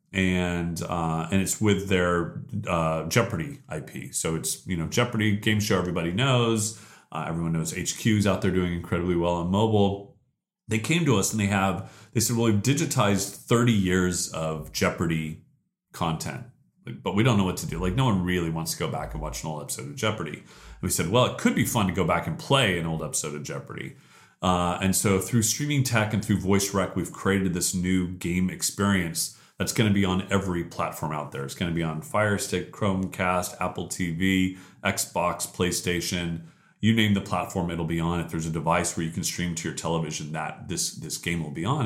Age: 30-49